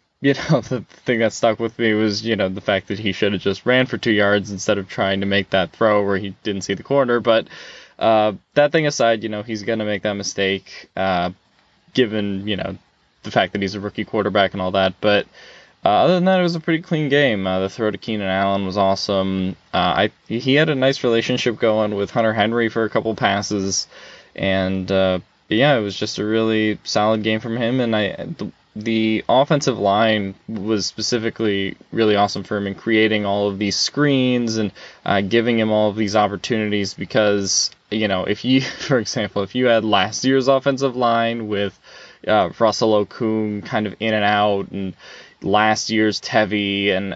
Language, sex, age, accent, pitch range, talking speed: English, male, 10-29, American, 100-115 Hz, 205 wpm